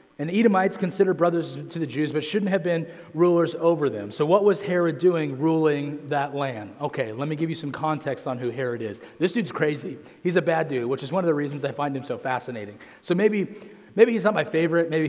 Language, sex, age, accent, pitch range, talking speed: English, male, 30-49, American, 145-180 Hz, 240 wpm